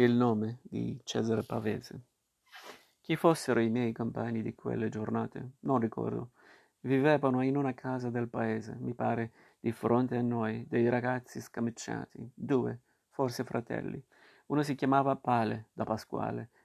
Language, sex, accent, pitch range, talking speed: Italian, male, native, 115-130 Hz, 140 wpm